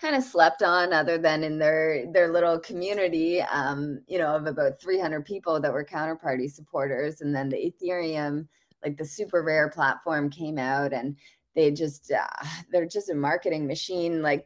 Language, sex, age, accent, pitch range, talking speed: English, female, 20-39, American, 150-180 Hz, 180 wpm